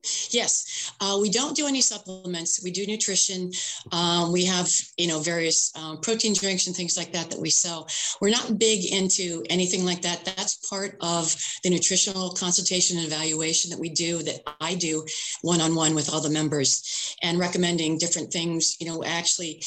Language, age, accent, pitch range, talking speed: English, 40-59, American, 160-185 Hz, 185 wpm